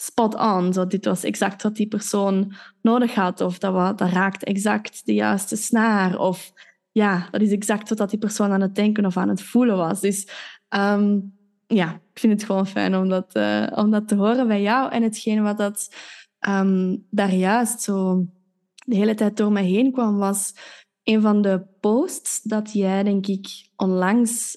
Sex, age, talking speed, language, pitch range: female, 20-39, 190 wpm, Dutch, 195-225 Hz